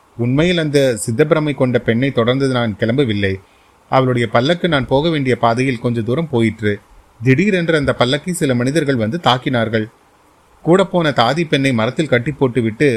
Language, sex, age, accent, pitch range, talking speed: Tamil, male, 30-49, native, 115-155 Hz, 140 wpm